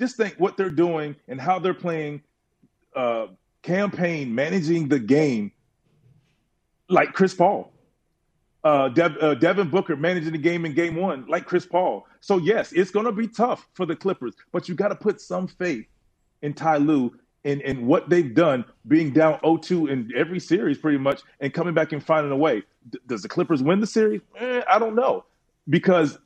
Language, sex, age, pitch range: English, male, 30-49, 140-180 Hz